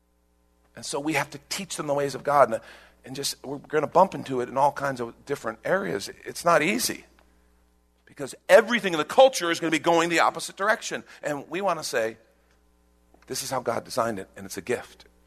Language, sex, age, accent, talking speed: English, male, 50-69, American, 225 wpm